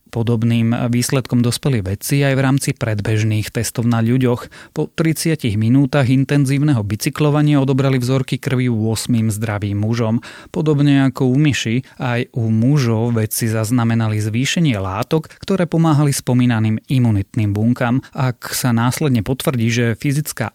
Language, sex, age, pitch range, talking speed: Slovak, male, 30-49, 110-135 Hz, 130 wpm